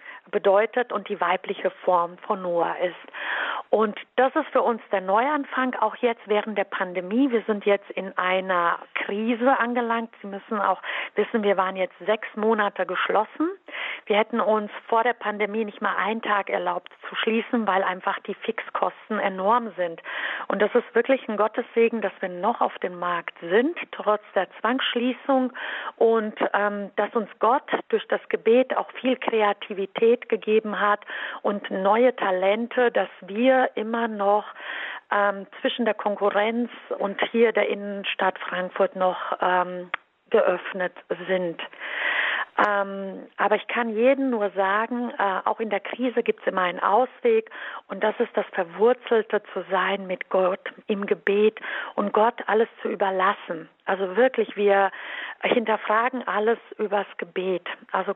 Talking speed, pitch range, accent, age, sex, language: 150 wpm, 195-235 Hz, German, 40-59, female, German